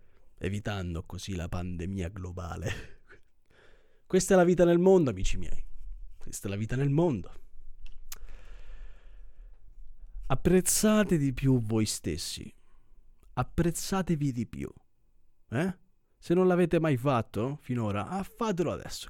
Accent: native